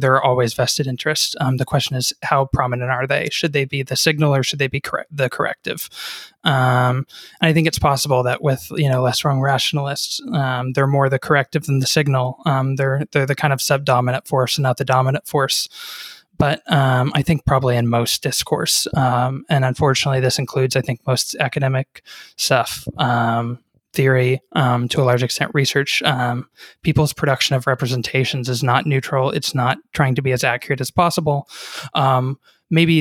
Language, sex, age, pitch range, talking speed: English, male, 20-39, 130-145 Hz, 190 wpm